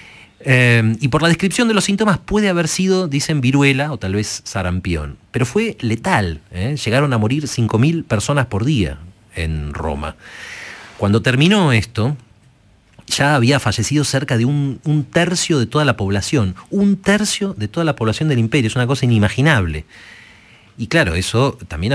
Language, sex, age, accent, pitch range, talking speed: Spanish, male, 40-59, Argentinian, 95-140 Hz, 165 wpm